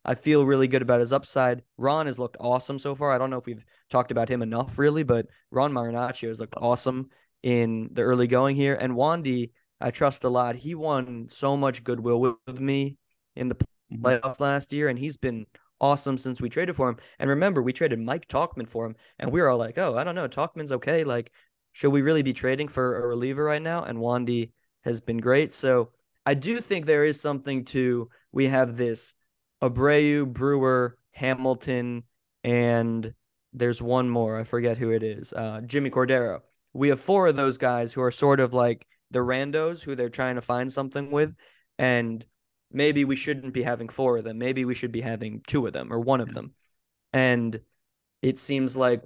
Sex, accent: male, American